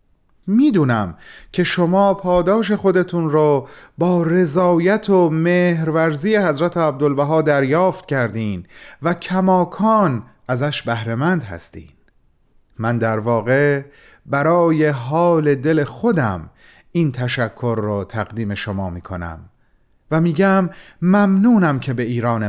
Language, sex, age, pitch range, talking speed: Persian, male, 40-59, 120-170 Hz, 100 wpm